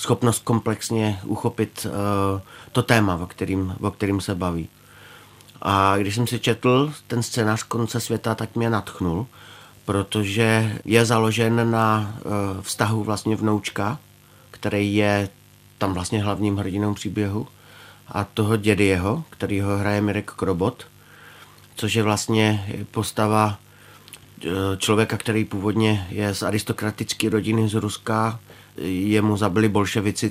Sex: male